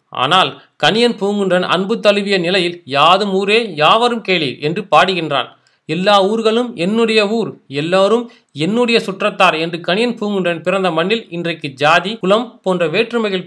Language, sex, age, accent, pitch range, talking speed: Tamil, male, 30-49, native, 175-225 Hz, 130 wpm